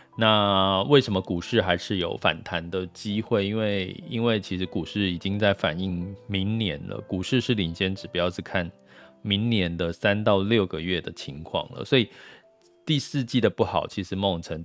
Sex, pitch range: male, 95-110 Hz